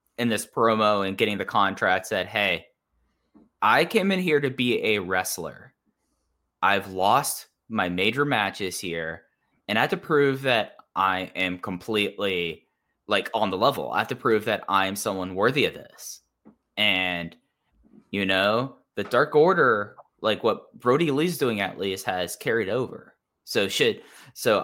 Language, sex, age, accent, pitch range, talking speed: English, male, 10-29, American, 95-130 Hz, 160 wpm